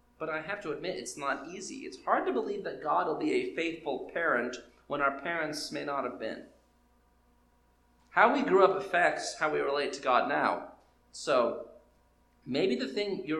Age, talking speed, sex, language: 30-49, 190 wpm, male, English